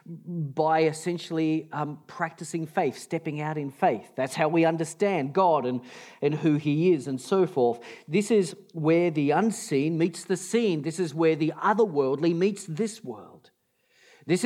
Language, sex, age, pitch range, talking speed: English, male, 40-59, 150-200 Hz, 160 wpm